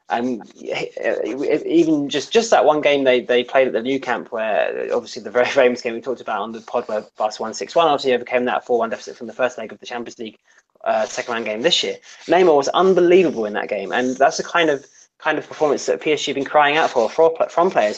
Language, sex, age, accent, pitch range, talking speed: English, male, 20-39, British, 125-170 Hz, 240 wpm